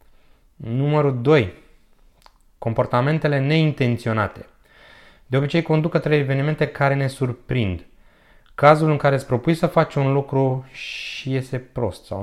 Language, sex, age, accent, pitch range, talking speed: Romanian, male, 20-39, native, 115-145 Hz, 125 wpm